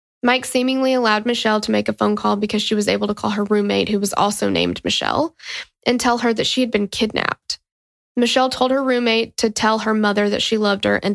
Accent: American